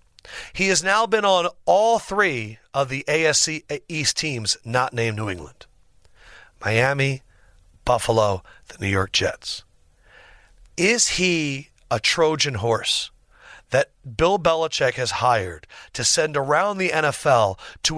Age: 40-59